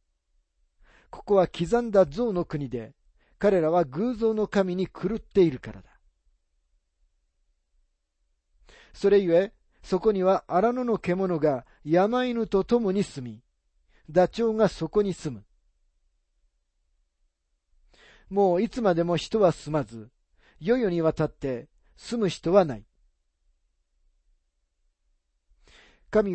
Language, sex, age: Japanese, male, 40-59